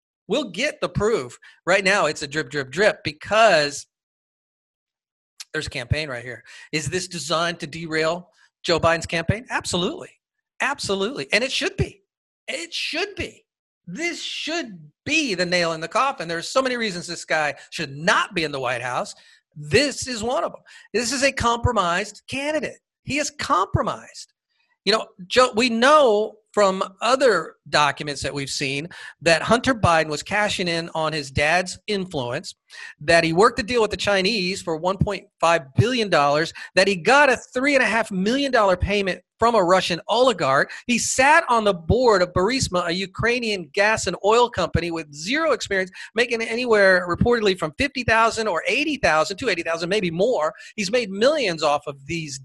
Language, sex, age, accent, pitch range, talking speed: English, male, 40-59, American, 165-240 Hz, 175 wpm